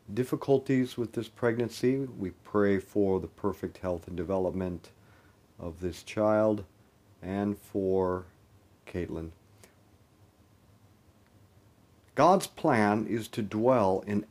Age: 50-69